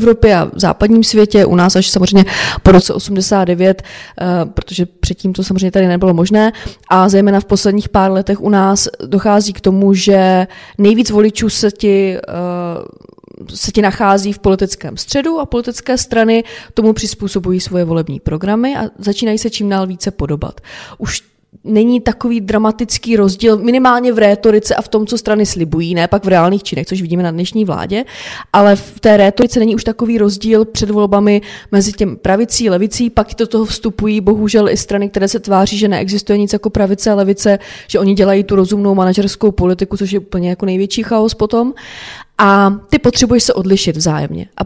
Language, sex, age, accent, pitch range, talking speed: Czech, female, 20-39, native, 190-225 Hz, 175 wpm